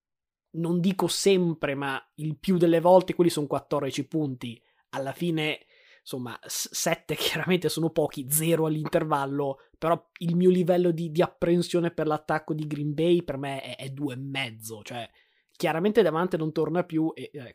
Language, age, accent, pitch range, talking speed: Italian, 20-39, native, 145-170 Hz, 160 wpm